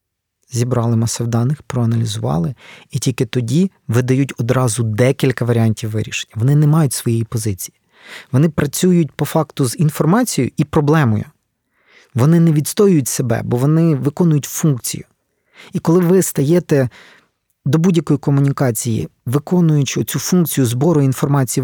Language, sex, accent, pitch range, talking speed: Ukrainian, male, native, 125-160 Hz, 125 wpm